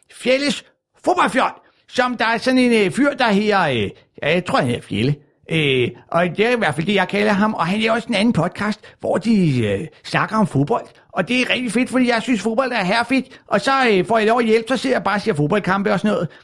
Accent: native